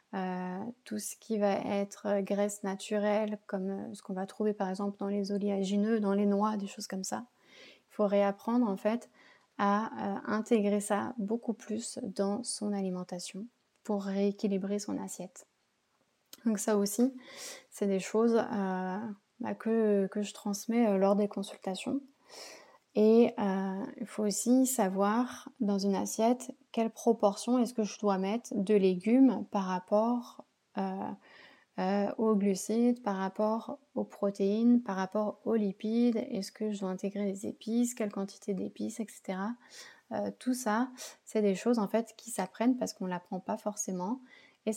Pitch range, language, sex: 200-230 Hz, French, female